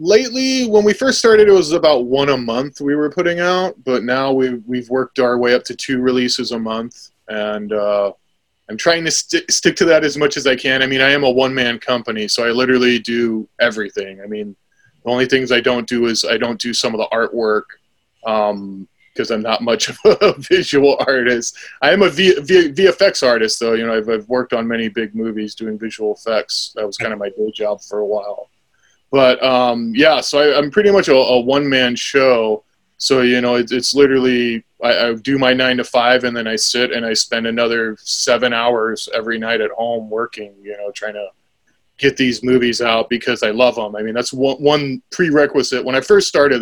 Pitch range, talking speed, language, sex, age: 115-135 Hz, 210 wpm, English, male, 20-39